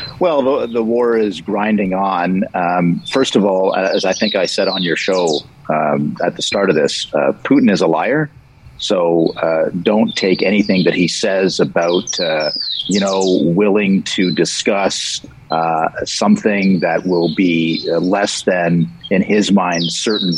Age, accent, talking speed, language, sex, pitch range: 50-69, American, 165 wpm, English, male, 90-110 Hz